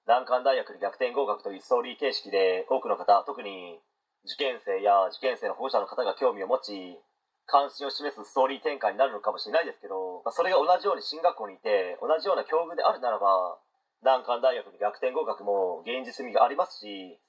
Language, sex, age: Japanese, male, 30-49